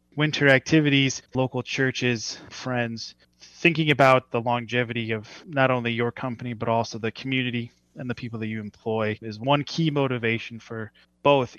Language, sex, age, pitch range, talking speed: English, male, 20-39, 115-130 Hz, 155 wpm